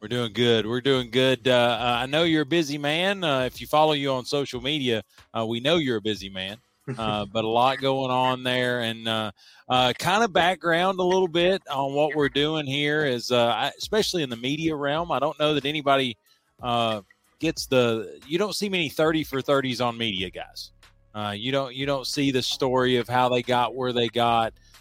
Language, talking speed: English, 220 wpm